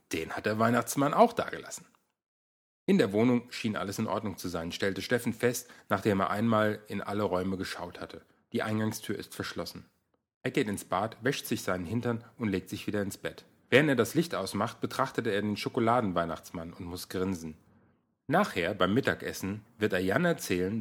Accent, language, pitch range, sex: German, German, 95-120 Hz, male